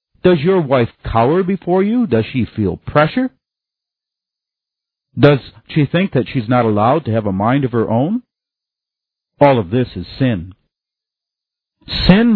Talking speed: 145 wpm